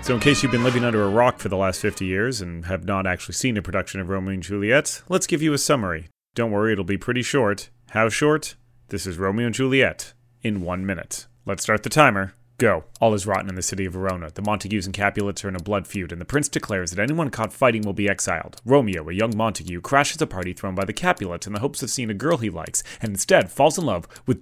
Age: 30-49